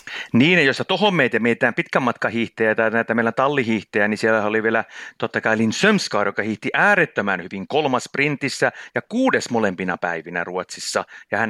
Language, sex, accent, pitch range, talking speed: Finnish, male, native, 95-115 Hz, 165 wpm